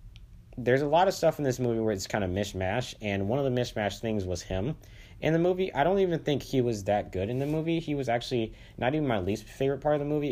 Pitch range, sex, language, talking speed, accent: 100-130 Hz, male, English, 275 wpm, American